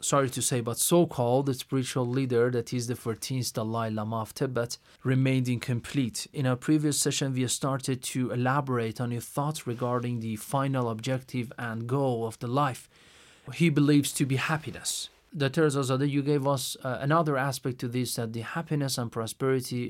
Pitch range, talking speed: 125-155 Hz, 170 wpm